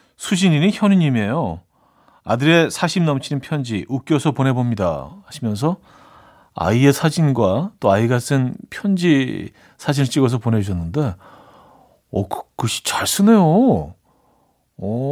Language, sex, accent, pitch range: Korean, male, native, 125-175 Hz